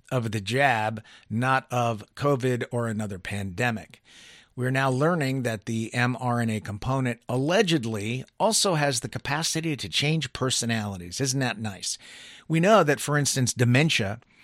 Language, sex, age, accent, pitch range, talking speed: English, male, 50-69, American, 115-145 Hz, 135 wpm